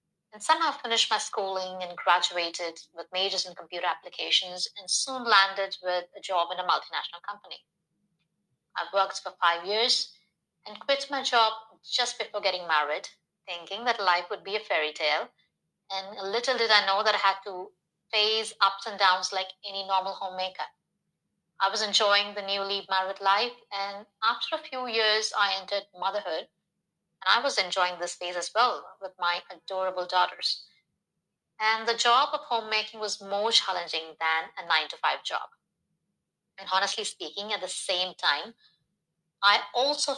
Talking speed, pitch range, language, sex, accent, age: 165 wpm, 180-225 Hz, English, female, Indian, 30-49